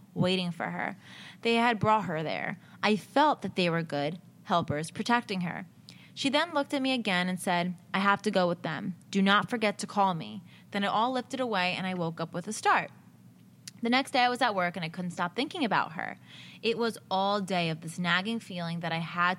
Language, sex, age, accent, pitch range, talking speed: English, female, 20-39, American, 180-230 Hz, 230 wpm